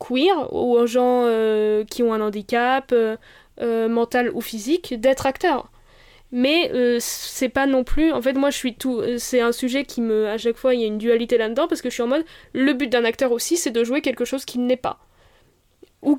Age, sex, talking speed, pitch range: 20-39, female, 225 wpm, 235-280 Hz